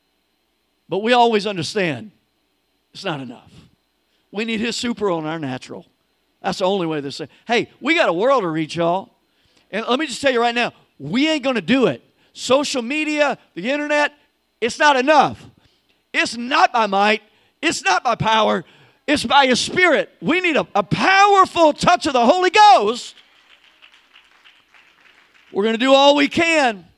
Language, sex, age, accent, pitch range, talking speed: English, male, 50-69, American, 185-265 Hz, 175 wpm